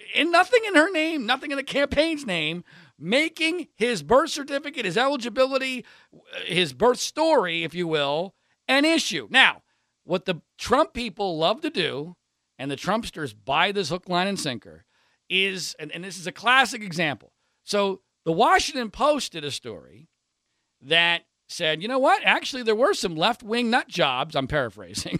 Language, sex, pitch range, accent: English, male, 180-275 Hz, American